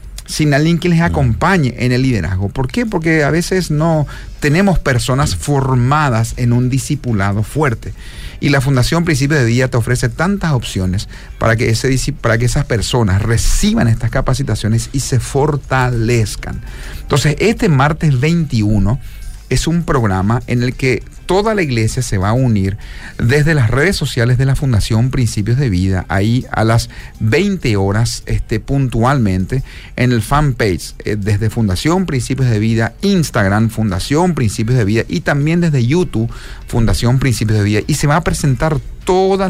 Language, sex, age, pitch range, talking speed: Spanish, male, 40-59, 115-150 Hz, 155 wpm